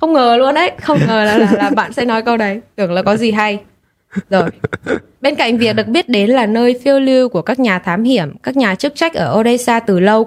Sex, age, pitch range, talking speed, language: female, 10-29, 190-250 Hz, 250 wpm, Vietnamese